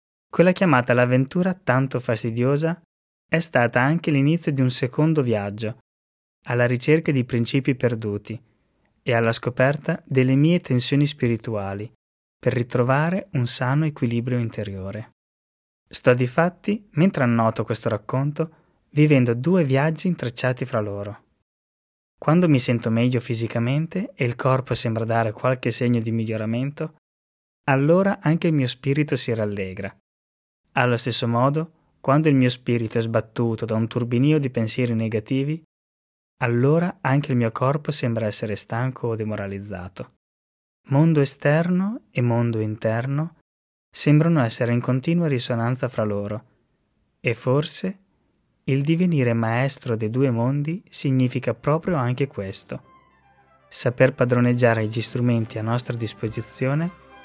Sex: male